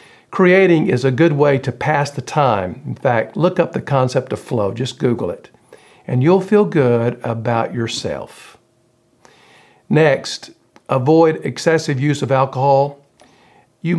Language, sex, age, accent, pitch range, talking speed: English, male, 50-69, American, 125-160 Hz, 140 wpm